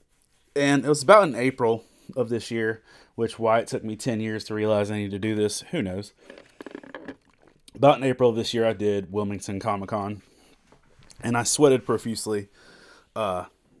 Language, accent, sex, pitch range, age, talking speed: English, American, male, 105-120 Hz, 30-49, 180 wpm